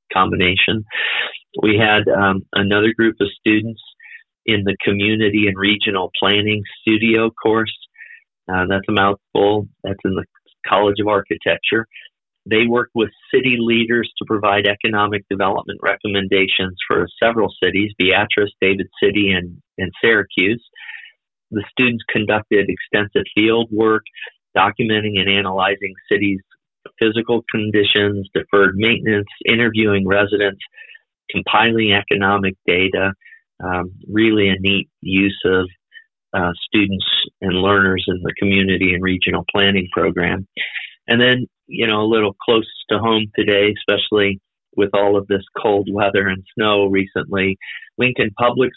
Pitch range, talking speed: 95-110 Hz, 125 wpm